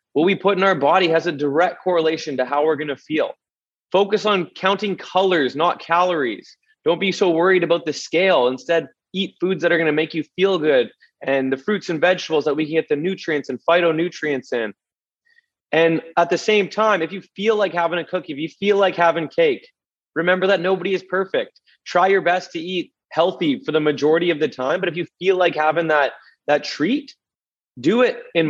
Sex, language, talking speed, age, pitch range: male, English, 215 wpm, 20-39, 150-190 Hz